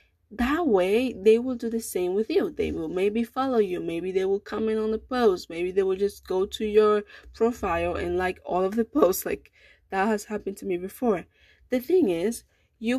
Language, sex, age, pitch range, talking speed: English, female, 20-39, 180-230 Hz, 210 wpm